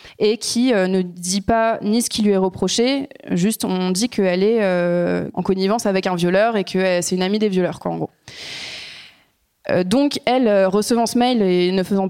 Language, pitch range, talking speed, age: French, 185-220 Hz, 195 wpm, 20-39